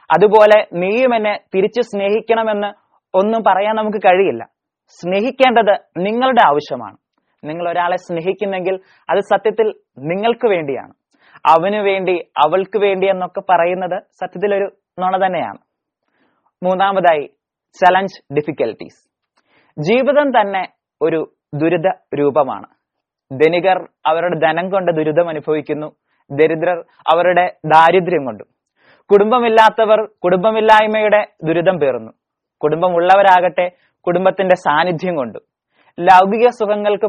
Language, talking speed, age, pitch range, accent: Malayalam, 90 wpm, 20-39, 175-210 Hz, native